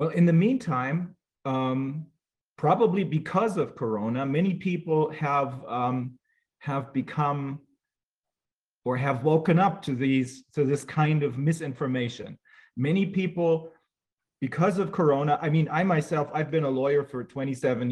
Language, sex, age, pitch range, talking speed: English, male, 30-49, 130-165 Hz, 135 wpm